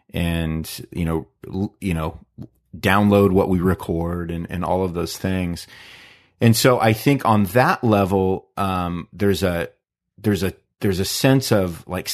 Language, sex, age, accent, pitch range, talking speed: English, male, 30-49, American, 85-110 Hz, 165 wpm